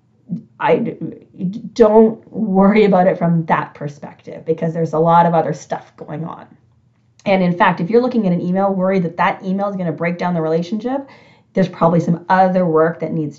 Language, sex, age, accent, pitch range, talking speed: English, female, 30-49, American, 165-220 Hz, 195 wpm